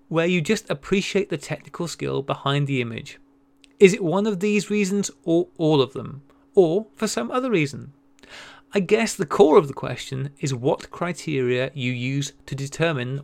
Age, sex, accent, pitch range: 30-49, male, British, 135-195 Hz